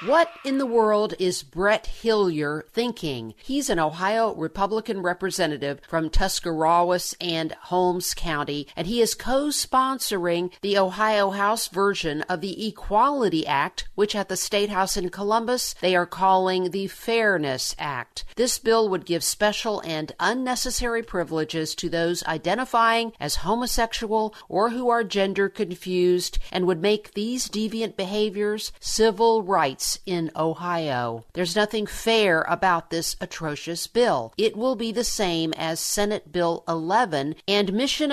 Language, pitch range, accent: English, 170-220 Hz, American